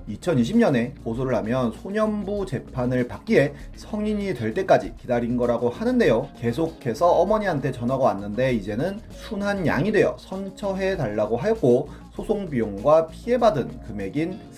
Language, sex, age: Korean, male, 30-49